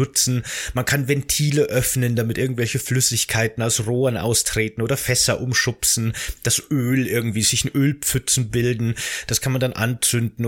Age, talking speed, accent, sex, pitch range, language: 30-49, 145 wpm, German, male, 105-130 Hz, German